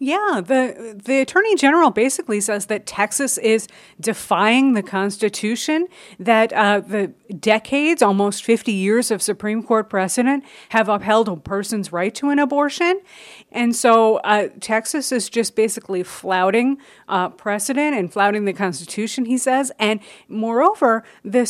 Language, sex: English, female